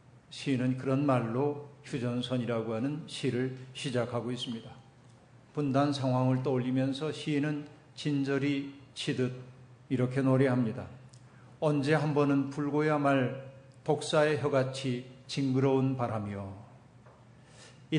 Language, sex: Korean, male